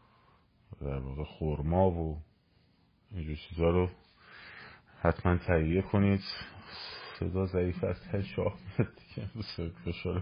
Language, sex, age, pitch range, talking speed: Persian, male, 30-49, 80-90 Hz, 100 wpm